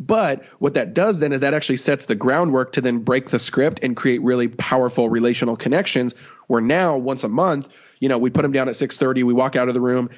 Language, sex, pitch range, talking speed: English, male, 120-135 Hz, 250 wpm